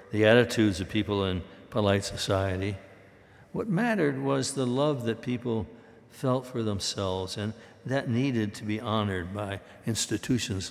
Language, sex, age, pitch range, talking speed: English, male, 60-79, 100-125 Hz, 140 wpm